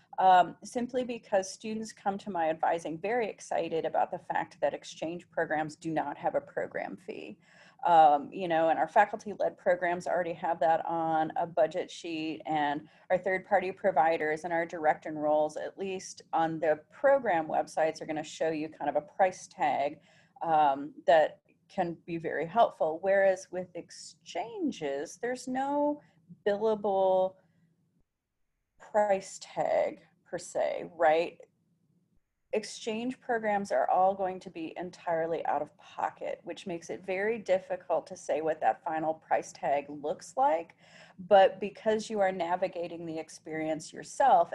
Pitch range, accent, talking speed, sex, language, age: 160-200 Hz, American, 150 wpm, female, English, 30-49